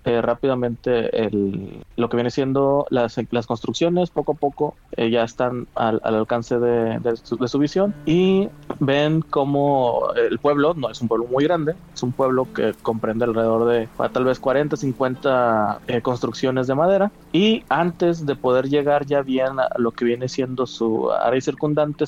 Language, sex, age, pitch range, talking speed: Spanish, male, 20-39, 120-150 Hz, 180 wpm